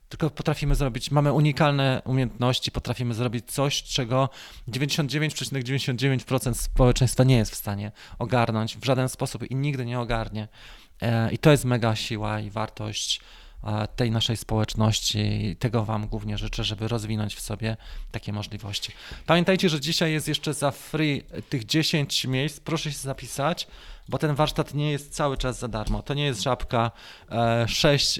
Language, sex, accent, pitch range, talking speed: Polish, male, native, 115-145 Hz, 155 wpm